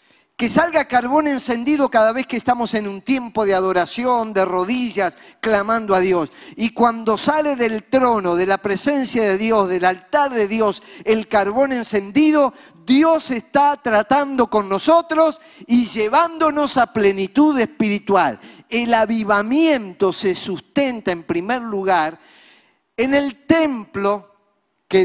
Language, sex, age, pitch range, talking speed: Spanish, male, 40-59, 165-235 Hz, 135 wpm